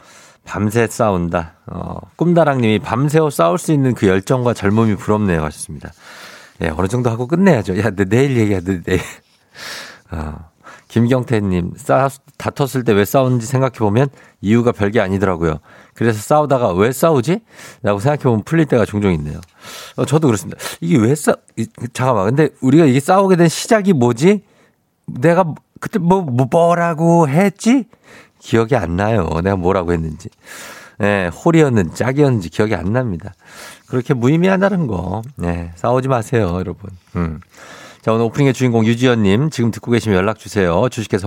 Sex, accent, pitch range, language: male, native, 100-145 Hz, Korean